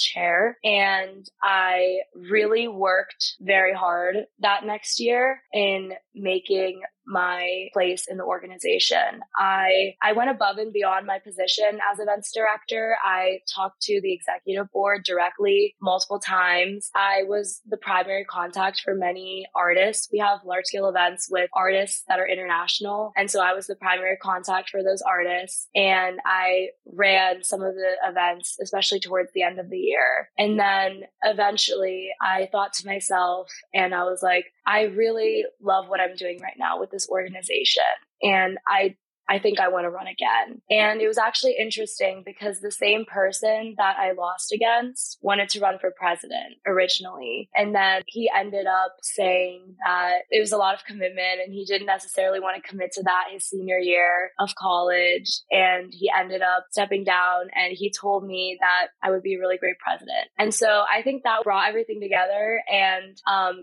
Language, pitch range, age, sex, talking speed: English, 185-210 Hz, 20-39, female, 175 wpm